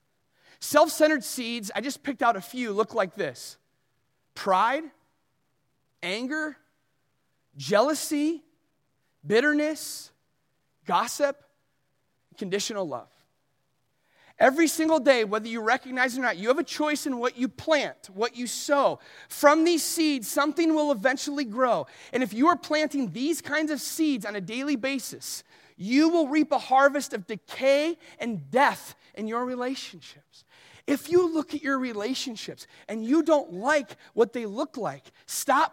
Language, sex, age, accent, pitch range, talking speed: English, male, 30-49, American, 210-305 Hz, 145 wpm